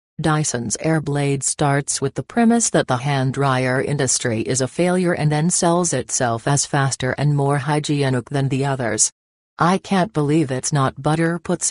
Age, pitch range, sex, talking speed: 40-59, 130-160 Hz, female, 170 wpm